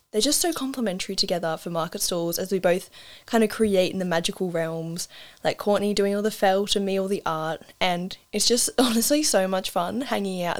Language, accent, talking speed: English, Australian, 215 wpm